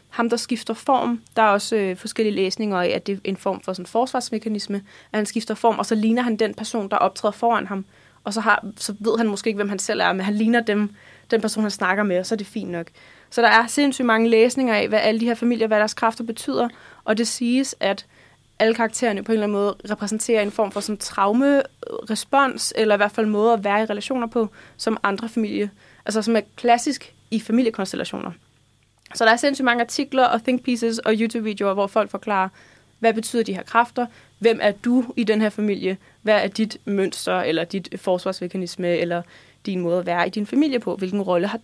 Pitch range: 200-235 Hz